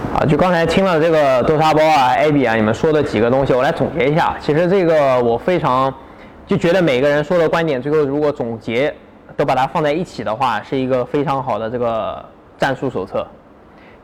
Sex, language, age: male, Chinese, 20-39